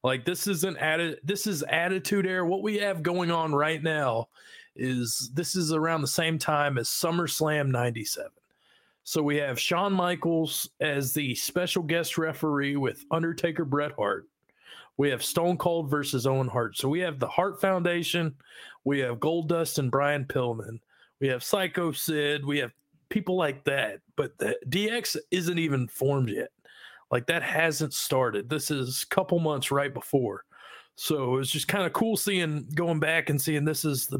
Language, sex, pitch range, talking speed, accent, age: English, male, 140-175 Hz, 180 wpm, American, 40-59